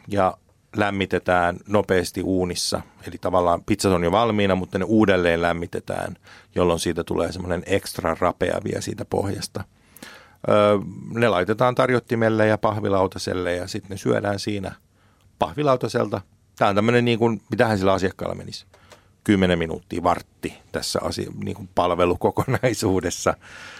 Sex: male